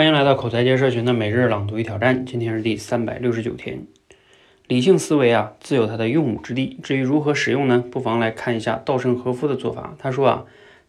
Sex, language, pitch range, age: male, Chinese, 115-145 Hz, 20-39